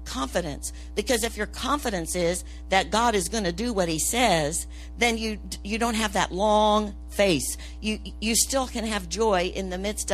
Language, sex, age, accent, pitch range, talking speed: English, female, 50-69, American, 145-215 Hz, 190 wpm